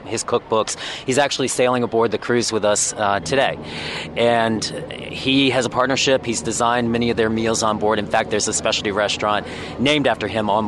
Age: 40-59